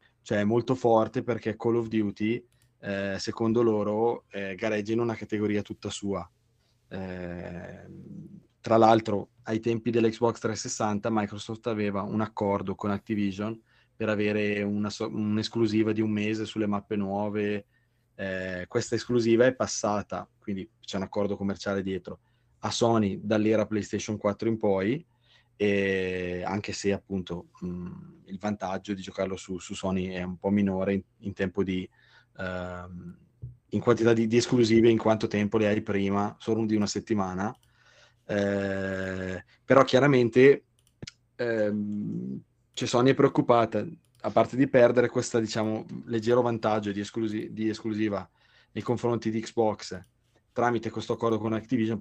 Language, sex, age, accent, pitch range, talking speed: Italian, male, 20-39, native, 100-120 Hz, 140 wpm